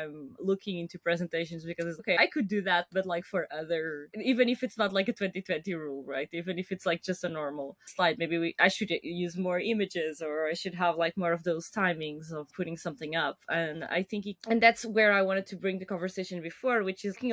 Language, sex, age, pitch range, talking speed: English, female, 20-39, 170-205 Hz, 235 wpm